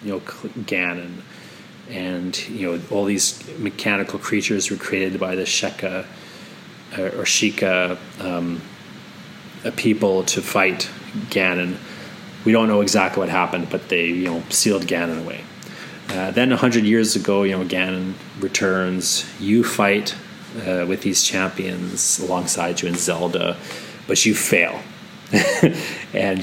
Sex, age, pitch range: male, 30-49, 90-105 Hz